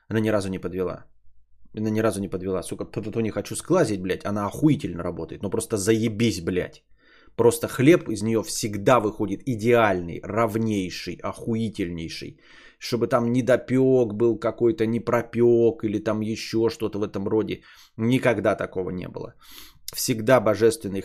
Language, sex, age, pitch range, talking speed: Bulgarian, male, 20-39, 100-125 Hz, 150 wpm